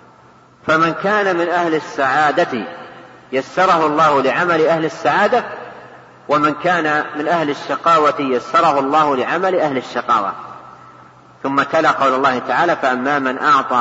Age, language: 40-59, Arabic